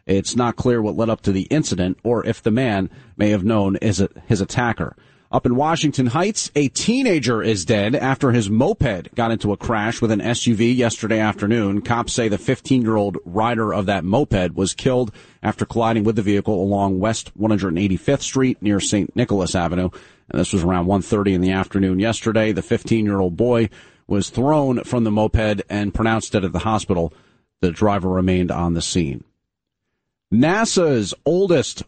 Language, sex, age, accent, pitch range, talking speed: English, male, 40-59, American, 105-140 Hz, 175 wpm